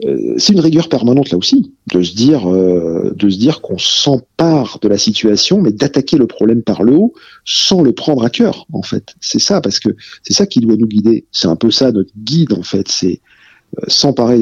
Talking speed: 220 wpm